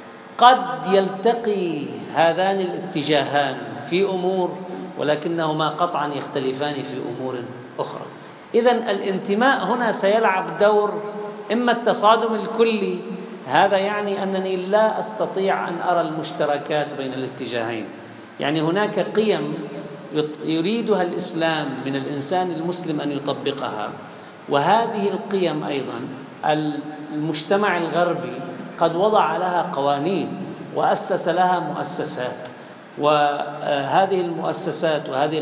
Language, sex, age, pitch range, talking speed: Arabic, male, 50-69, 150-205 Hz, 95 wpm